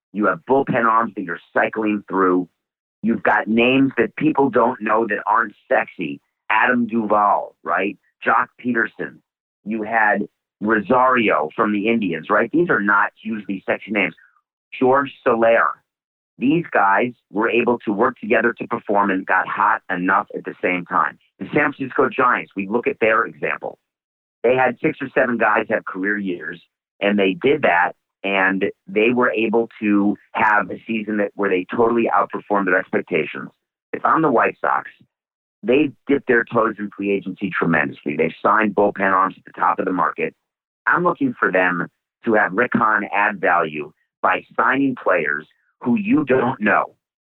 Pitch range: 100-120 Hz